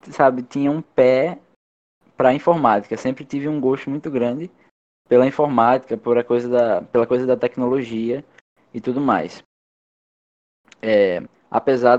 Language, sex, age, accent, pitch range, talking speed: Portuguese, male, 10-29, Brazilian, 110-130 Hz, 130 wpm